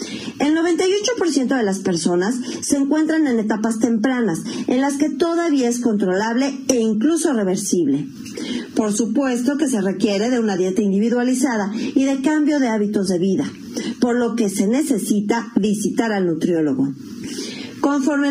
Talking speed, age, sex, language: 145 wpm, 40-59, female, Spanish